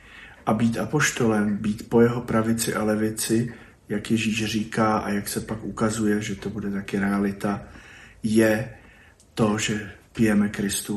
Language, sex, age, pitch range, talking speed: Slovak, male, 50-69, 105-115 Hz, 150 wpm